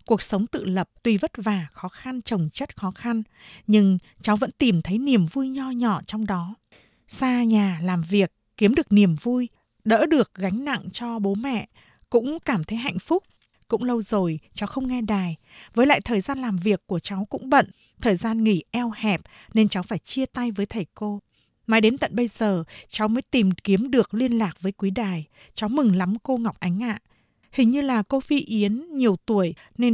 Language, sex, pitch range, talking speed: Vietnamese, female, 195-245 Hz, 210 wpm